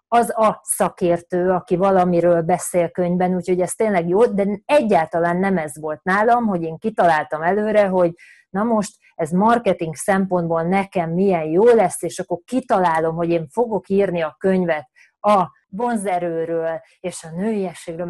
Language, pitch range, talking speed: Hungarian, 175-220 Hz, 150 wpm